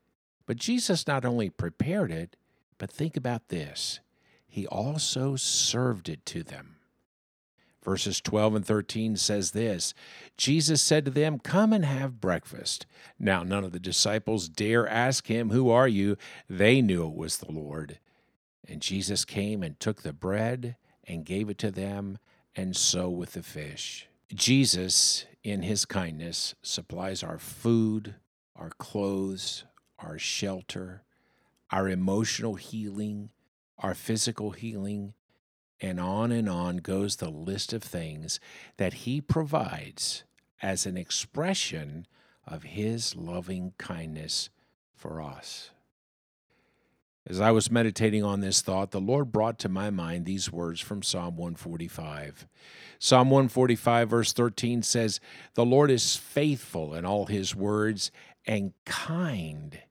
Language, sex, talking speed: English, male, 135 wpm